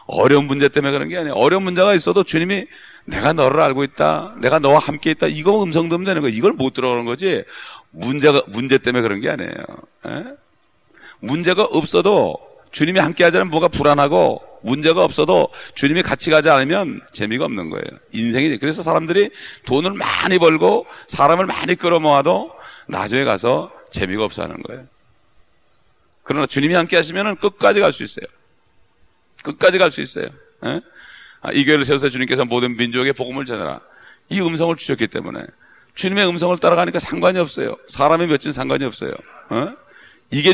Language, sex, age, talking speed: English, male, 40-59, 140 wpm